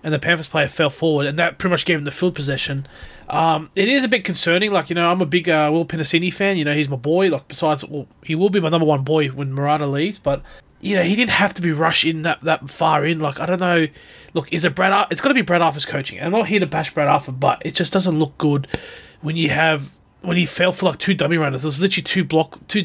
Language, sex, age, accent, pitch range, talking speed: English, male, 20-39, Australian, 145-180 Hz, 285 wpm